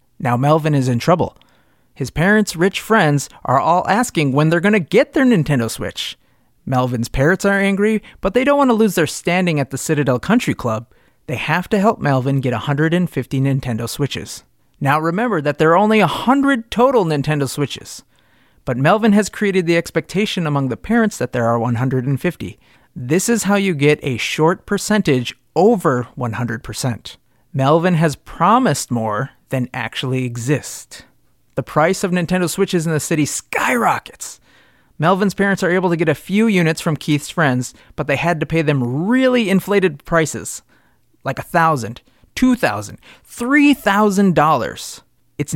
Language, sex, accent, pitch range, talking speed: English, male, American, 130-190 Hz, 165 wpm